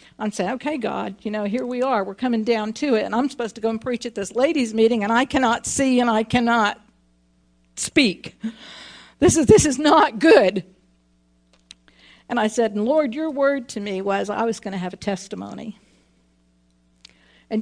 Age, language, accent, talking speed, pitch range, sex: 50-69, English, American, 190 wpm, 220-300 Hz, female